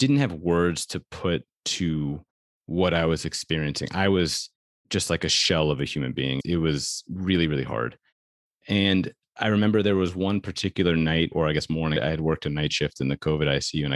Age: 30-49